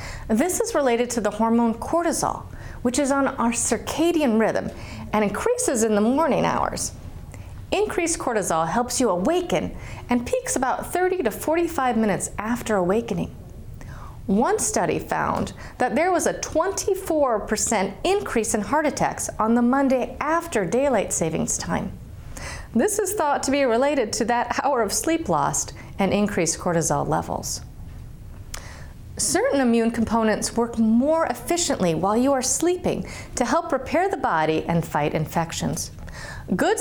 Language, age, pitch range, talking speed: English, 40-59, 190-285 Hz, 140 wpm